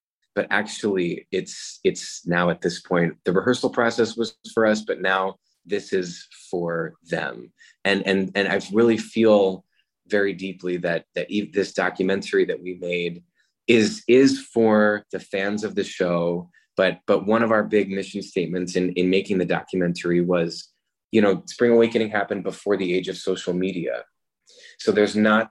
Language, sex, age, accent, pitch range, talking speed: English, male, 20-39, American, 90-110 Hz, 165 wpm